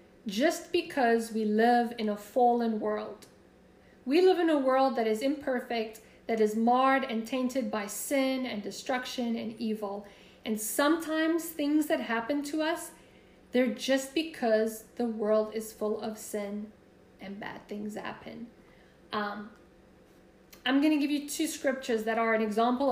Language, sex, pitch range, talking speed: English, female, 230-305 Hz, 155 wpm